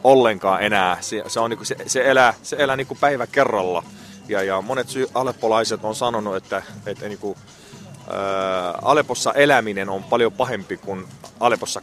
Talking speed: 165 wpm